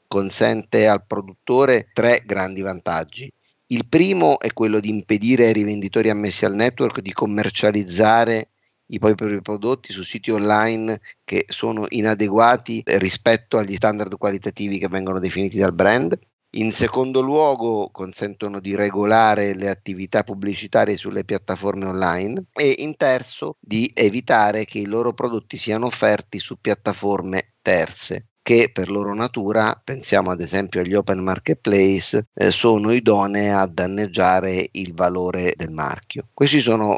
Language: Italian